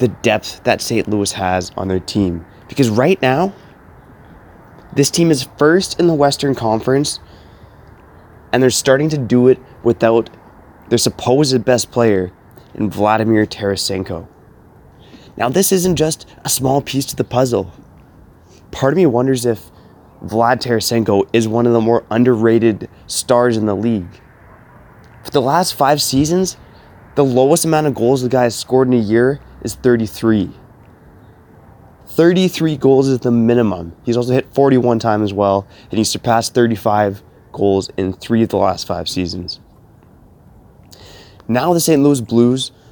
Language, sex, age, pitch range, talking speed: English, male, 20-39, 100-130 Hz, 150 wpm